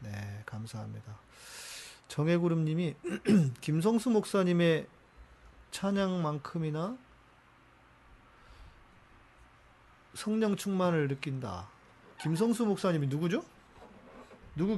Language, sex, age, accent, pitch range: Korean, male, 40-59, native, 120-180 Hz